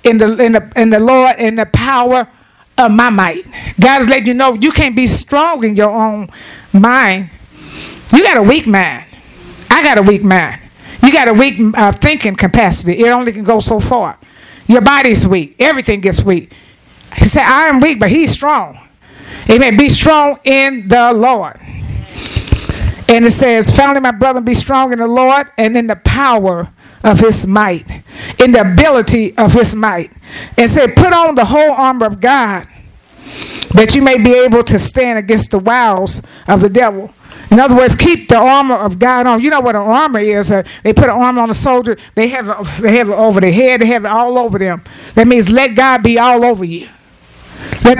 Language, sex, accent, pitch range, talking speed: English, female, American, 215-260 Hz, 205 wpm